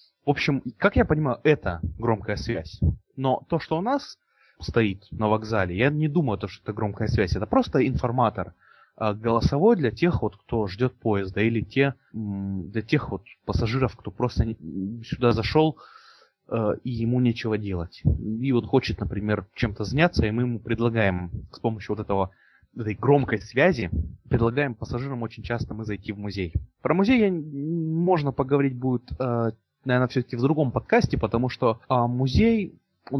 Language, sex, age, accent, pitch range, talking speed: Russian, male, 20-39, native, 105-135 Hz, 155 wpm